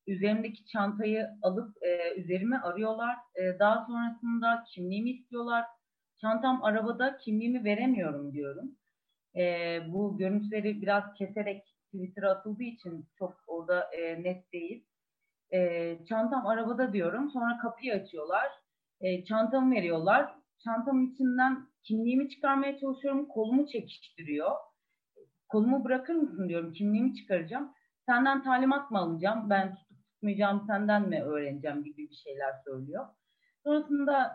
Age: 40-59